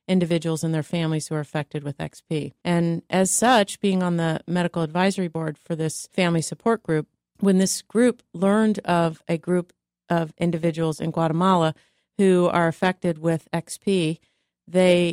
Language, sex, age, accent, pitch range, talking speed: English, female, 40-59, American, 160-175 Hz, 160 wpm